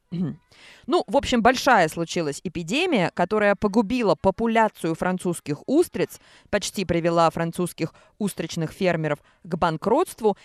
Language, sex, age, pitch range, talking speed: Russian, female, 20-39, 180-240 Hz, 105 wpm